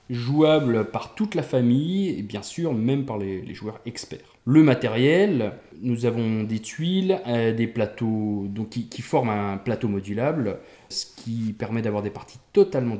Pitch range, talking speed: 105-135 Hz, 170 wpm